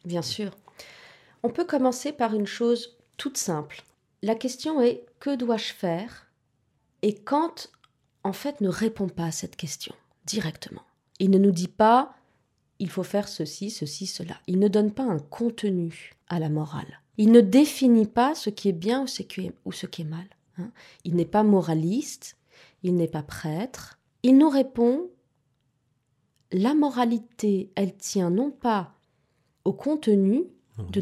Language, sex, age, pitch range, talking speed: French, female, 30-49, 160-240 Hz, 155 wpm